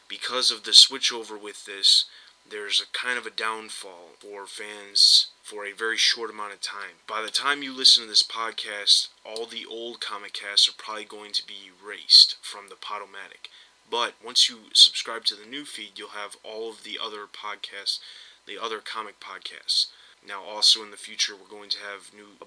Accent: American